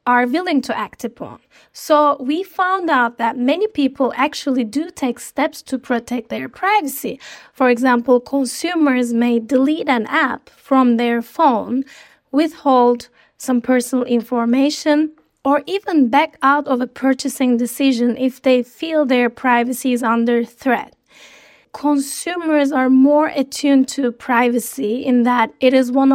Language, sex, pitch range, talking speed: English, female, 245-285 Hz, 140 wpm